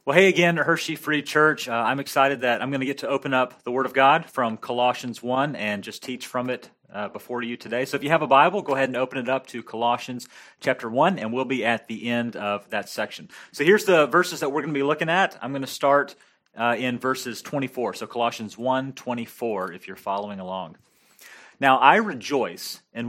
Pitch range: 120-145 Hz